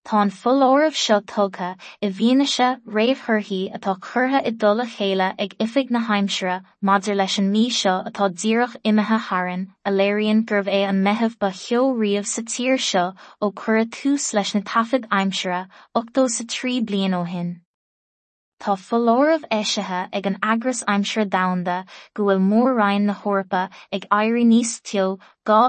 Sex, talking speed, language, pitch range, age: female, 125 wpm, English, 195-230 Hz, 20-39